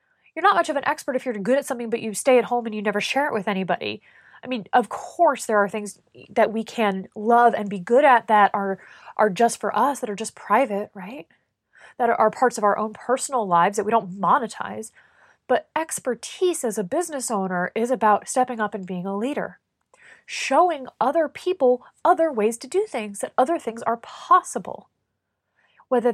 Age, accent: 20-39, American